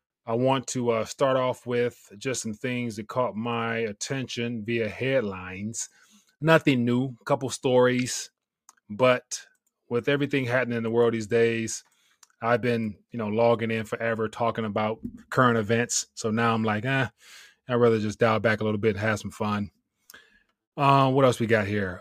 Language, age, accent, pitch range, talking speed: English, 20-39, American, 110-125 Hz, 175 wpm